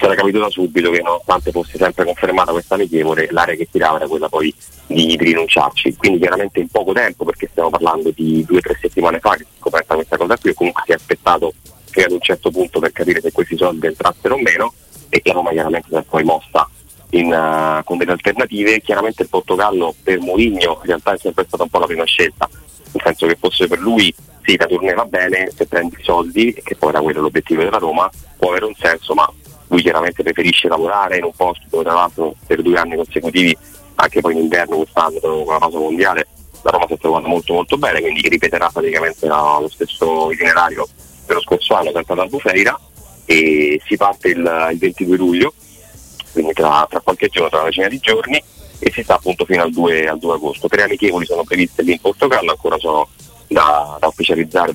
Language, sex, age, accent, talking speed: Italian, male, 30-49, native, 215 wpm